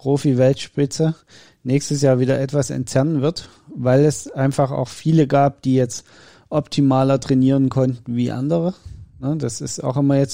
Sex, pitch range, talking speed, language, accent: male, 130-140 Hz, 145 wpm, German, German